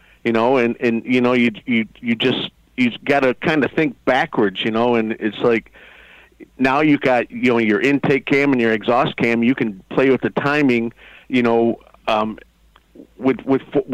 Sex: male